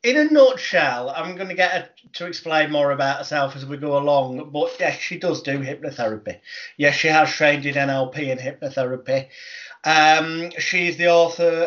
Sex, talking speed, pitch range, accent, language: male, 180 wpm, 135-170 Hz, British, English